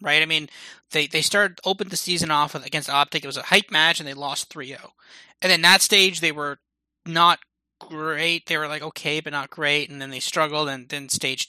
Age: 20-39